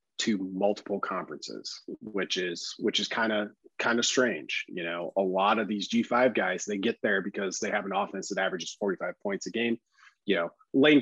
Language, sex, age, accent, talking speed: English, male, 30-49, American, 200 wpm